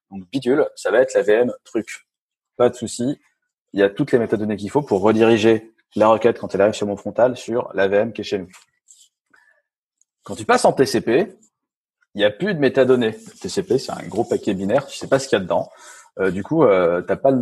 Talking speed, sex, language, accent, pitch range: 245 wpm, male, French, French, 100-125 Hz